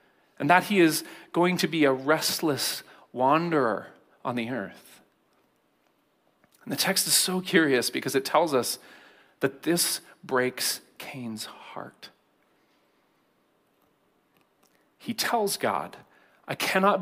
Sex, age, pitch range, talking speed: male, 40-59, 145-190 Hz, 115 wpm